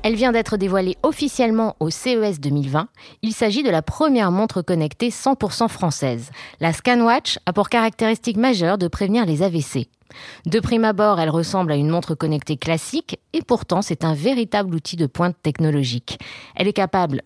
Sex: female